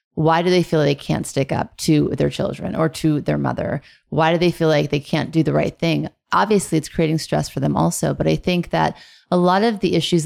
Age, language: 30-49, English